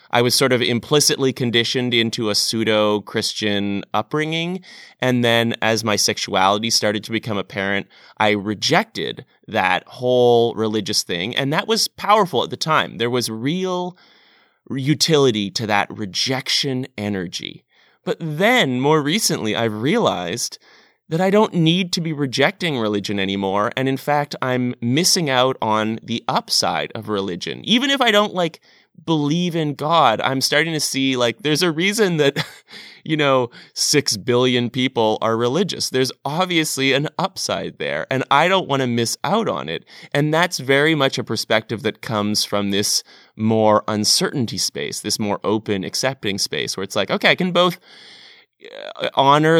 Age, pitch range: 30-49, 110-155 Hz